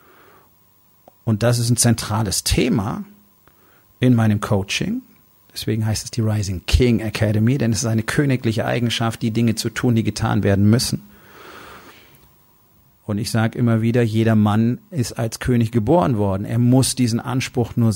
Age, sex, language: 40-59, male, German